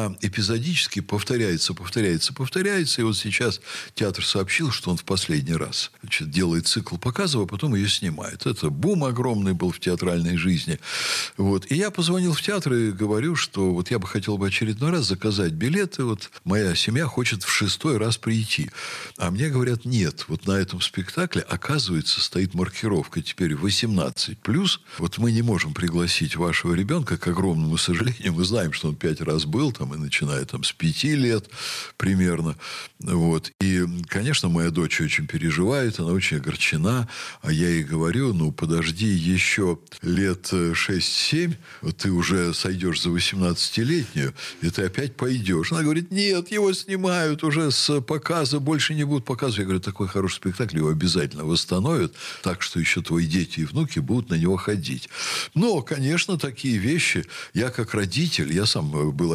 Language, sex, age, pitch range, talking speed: Russian, male, 60-79, 90-140 Hz, 165 wpm